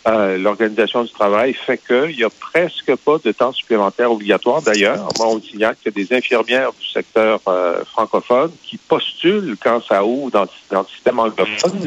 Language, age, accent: French, 50-69, French